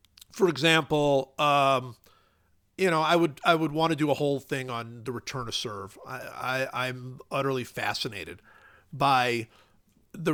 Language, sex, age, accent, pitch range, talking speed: English, male, 50-69, American, 130-175 Hz, 155 wpm